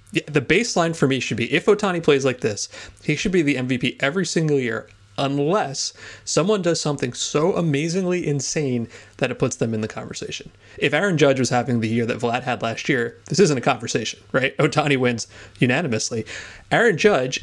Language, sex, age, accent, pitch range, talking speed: English, male, 30-49, American, 120-155 Hz, 195 wpm